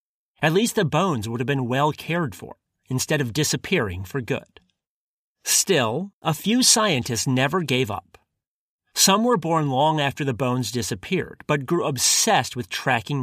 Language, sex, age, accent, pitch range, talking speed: English, male, 30-49, American, 125-180 Hz, 160 wpm